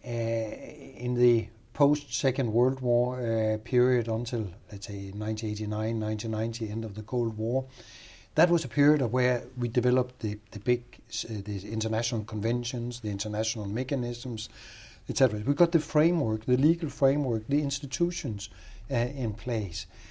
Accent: Danish